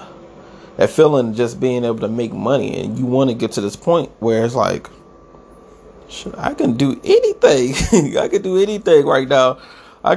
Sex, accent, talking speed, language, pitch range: male, American, 170 wpm, English, 115-145 Hz